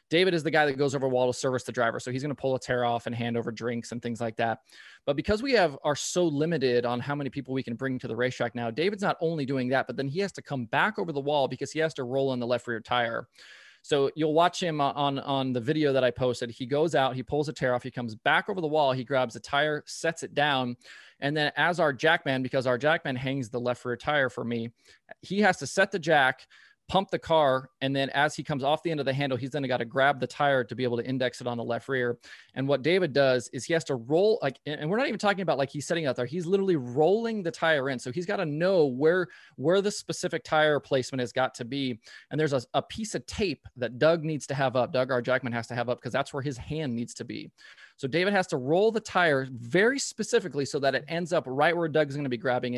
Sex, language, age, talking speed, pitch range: male, English, 20-39, 275 wpm, 125-160 Hz